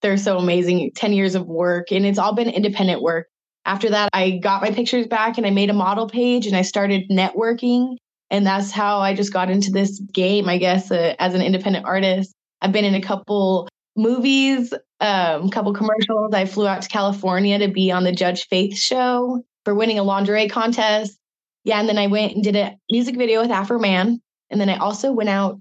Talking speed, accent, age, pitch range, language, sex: 215 wpm, American, 20-39, 195-235 Hz, English, female